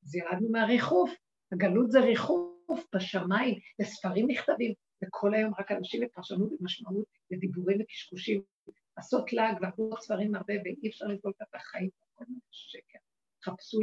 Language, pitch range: Hebrew, 205-280 Hz